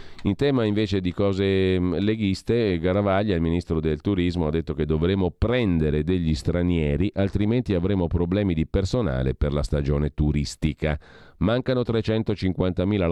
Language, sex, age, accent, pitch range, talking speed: Italian, male, 40-59, native, 75-100 Hz, 135 wpm